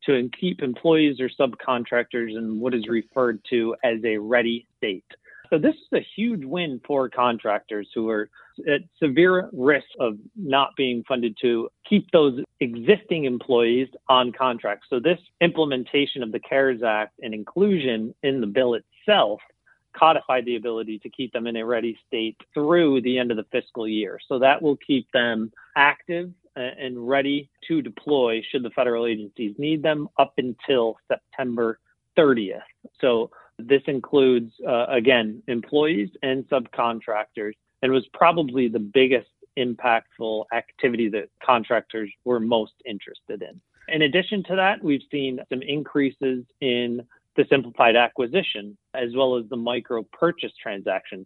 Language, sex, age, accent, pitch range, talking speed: English, male, 40-59, American, 115-145 Hz, 150 wpm